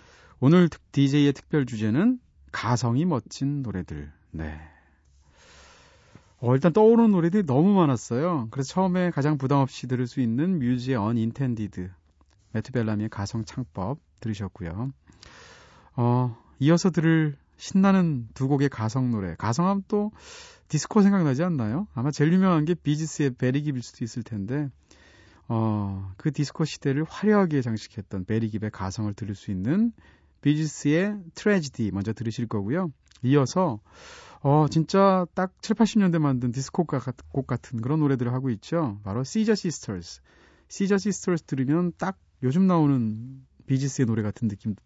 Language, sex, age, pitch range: Korean, male, 30-49, 110-165 Hz